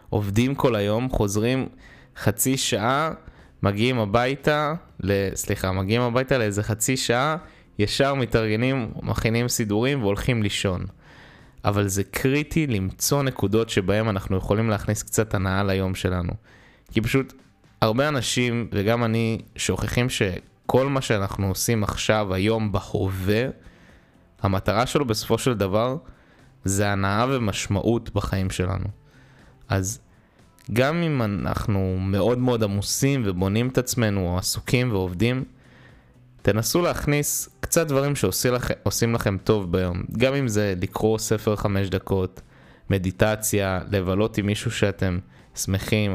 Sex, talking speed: male, 120 wpm